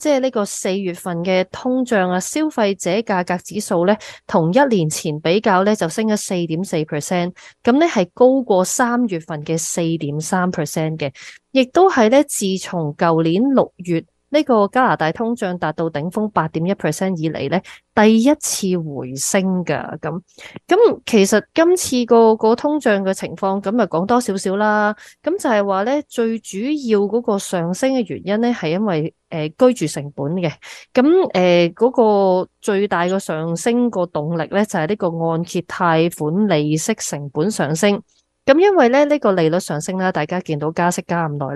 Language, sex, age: Chinese, female, 20-39